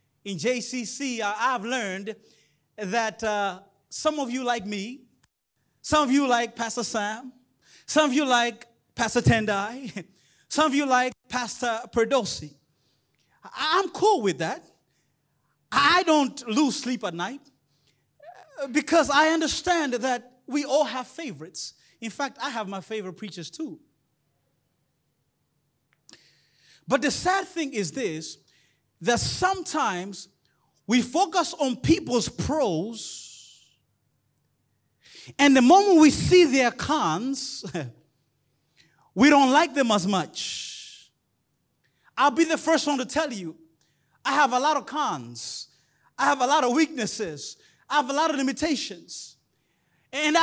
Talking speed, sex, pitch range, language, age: 130 wpm, male, 200-300 Hz, English, 30-49